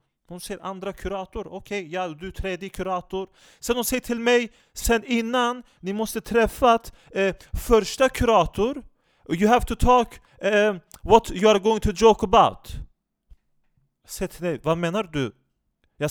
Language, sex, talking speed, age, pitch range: Swedish, male, 155 wpm, 30-49, 175-225 Hz